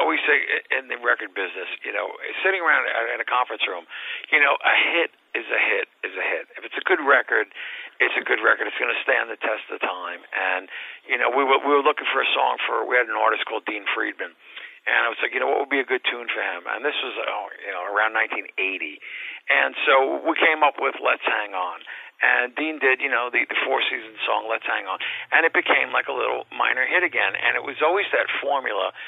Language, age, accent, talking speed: English, 50-69, American, 240 wpm